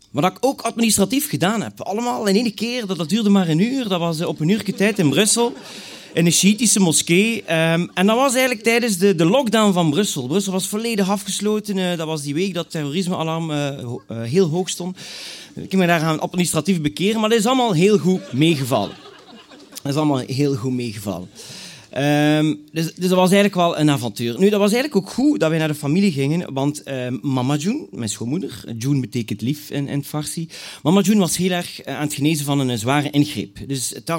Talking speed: 210 wpm